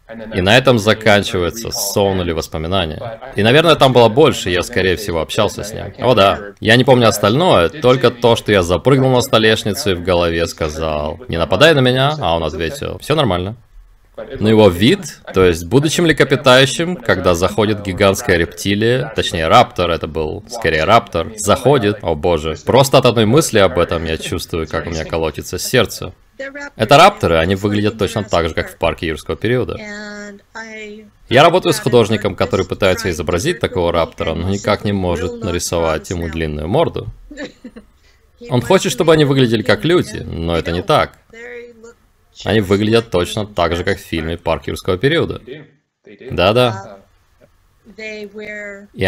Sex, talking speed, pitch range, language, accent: male, 160 wpm, 90-130 Hz, Russian, native